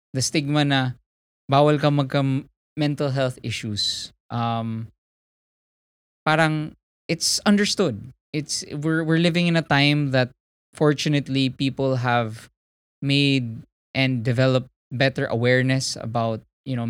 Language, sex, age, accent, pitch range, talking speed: English, male, 20-39, Filipino, 115-150 Hz, 110 wpm